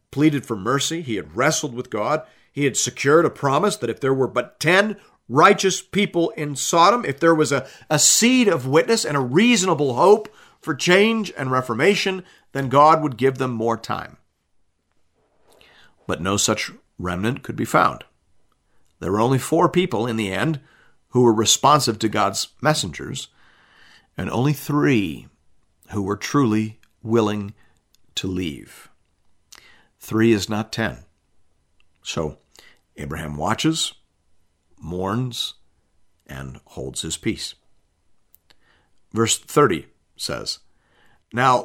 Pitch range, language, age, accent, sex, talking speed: 105-155 Hz, English, 50-69, American, male, 135 wpm